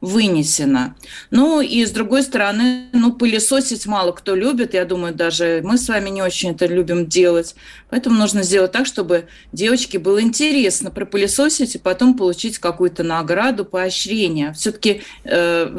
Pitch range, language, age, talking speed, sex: 165-225 Hz, Russian, 30-49, 150 wpm, female